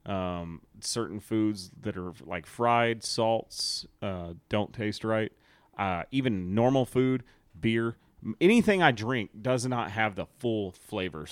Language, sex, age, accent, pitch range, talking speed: English, male, 30-49, American, 95-125 Hz, 140 wpm